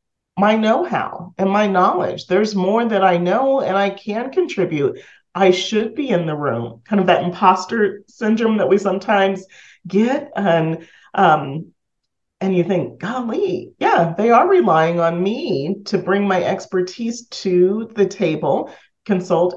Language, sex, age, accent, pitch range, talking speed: English, male, 40-59, American, 155-195 Hz, 150 wpm